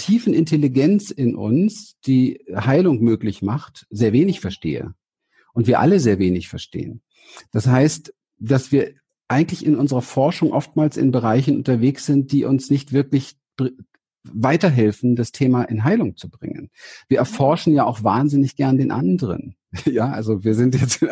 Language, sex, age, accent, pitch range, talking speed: German, male, 50-69, German, 110-155 Hz, 155 wpm